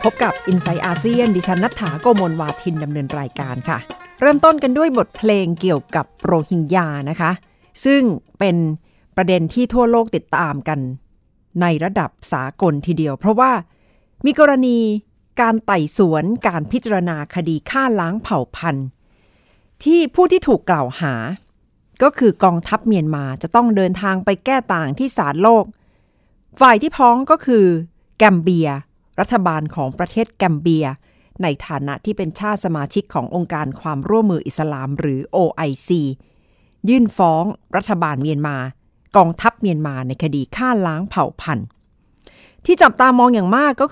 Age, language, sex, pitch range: 60-79, Thai, female, 155-230 Hz